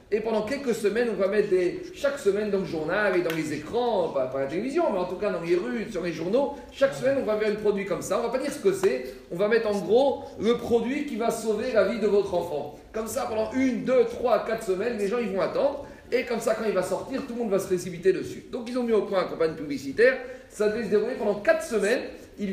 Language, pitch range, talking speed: French, 190-250 Hz, 280 wpm